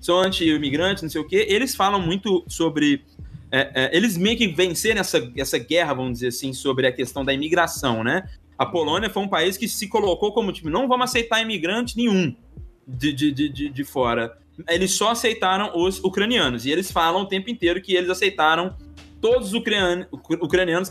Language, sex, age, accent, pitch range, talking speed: Portuguese, male, 20-39, Brazilian, 145-210 Hz, 185 wpm